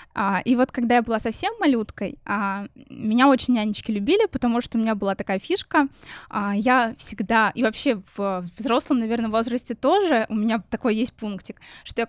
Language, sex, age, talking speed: Russian, female, 20-39, 190 wpm